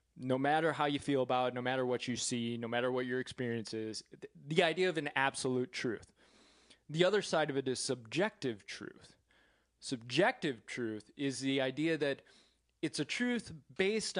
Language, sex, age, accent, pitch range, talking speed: English, male, 20-39, American, 120-155 Hz, 180 wpm